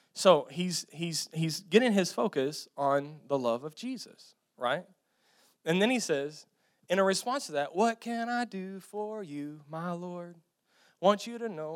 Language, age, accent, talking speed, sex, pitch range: English, 30-49, American, 180 wpm, male, 190-255 Hz